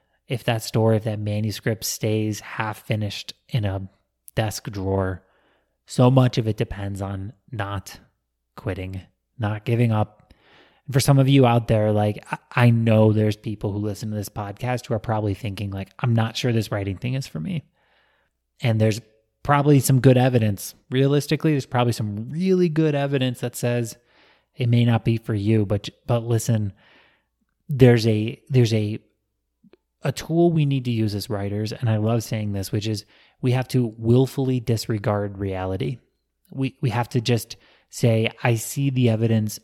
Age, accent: 20-39, American